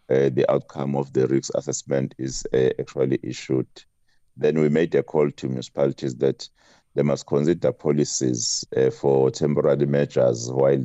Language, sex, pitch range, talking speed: English, male, 65-75 Hz, 155 wpm